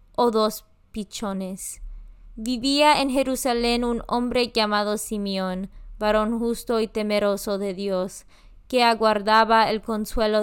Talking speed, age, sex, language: 115 wpm, 20-39, female, Spanish